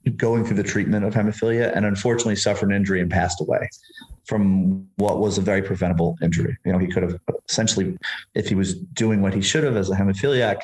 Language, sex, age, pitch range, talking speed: English, male, 30-49, 95-115 Hz, 215 wpm